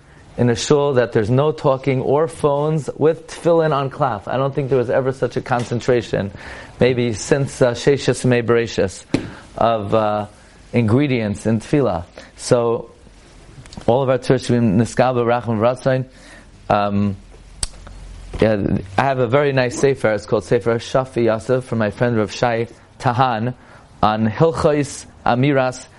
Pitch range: 115-145 Hz